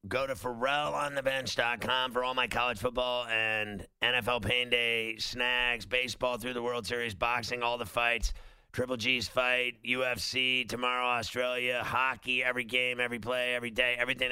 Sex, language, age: male, English, 50-69